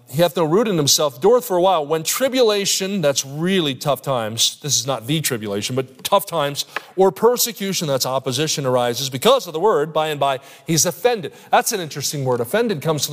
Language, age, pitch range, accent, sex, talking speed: English, 30-49, 140-180 Hz, American, male, 205 wpm